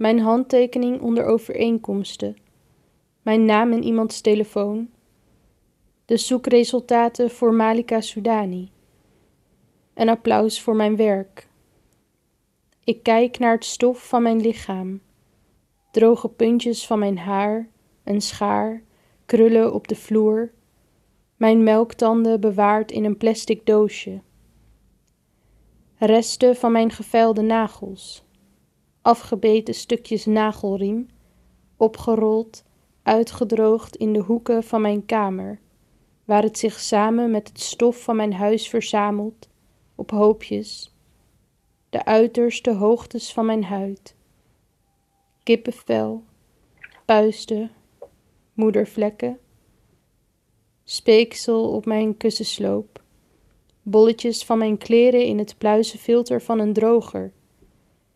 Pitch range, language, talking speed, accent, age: 210-230 Hz, Dutch, 100 wpm, Dutch, 20-39